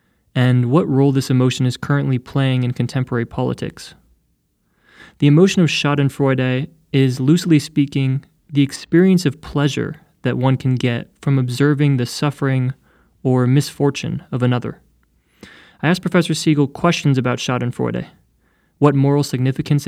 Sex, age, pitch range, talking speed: male, 20-39, 125-150 Hz, 135 wpm